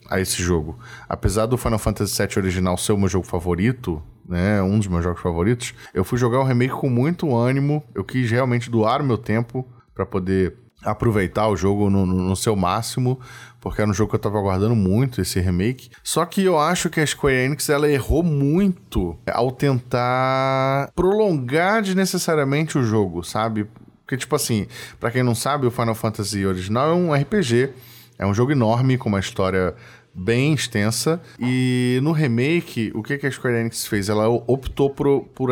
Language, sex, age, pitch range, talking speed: Portuguese, male, 10-29, 100-140 Hz, 185 wpm